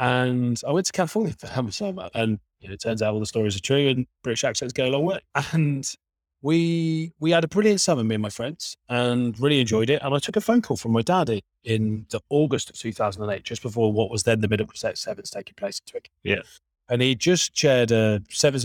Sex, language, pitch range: male, English, 110-150 Hz